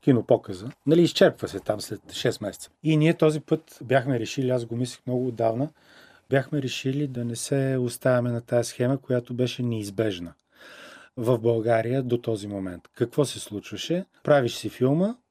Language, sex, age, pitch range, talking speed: Bulgarian, male, 40-59, 115-145 Hz, 165 wpm